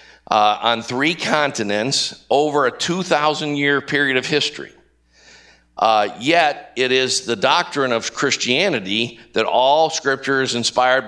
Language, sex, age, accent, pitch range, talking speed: English, male, 50-69, American, 115-145 Hz, 125 wpm